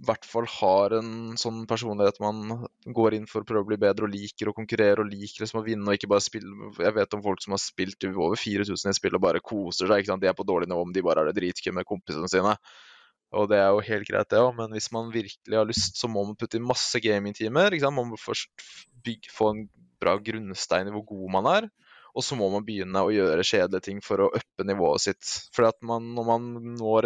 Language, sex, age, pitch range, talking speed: English, male, 20-39, 105-120 Hz, 235 wpm